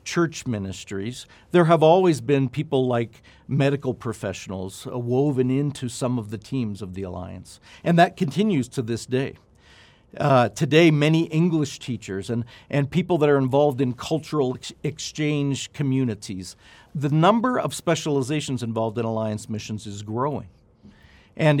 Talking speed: 140 wpm